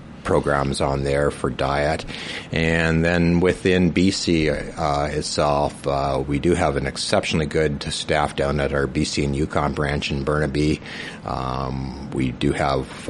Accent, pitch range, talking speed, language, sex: American, 70-75 Hz, 145 wpm, English, male